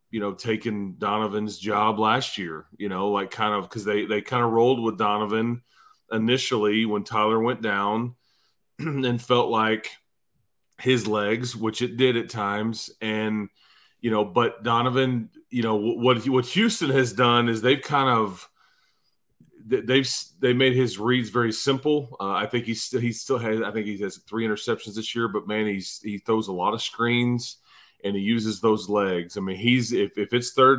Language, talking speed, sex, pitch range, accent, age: English, 185 wpm, male, 105-130 Hz, American, 30-49